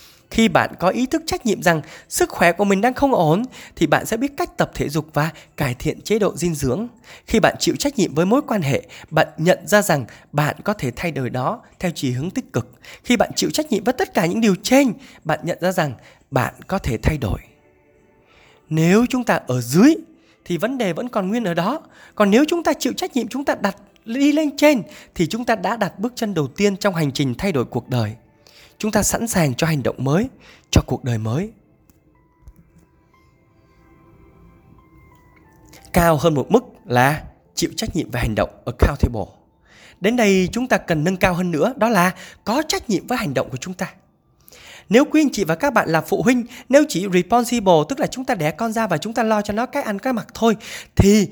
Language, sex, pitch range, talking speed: Vietnamese, male, 165-245 Hz, 225 wpm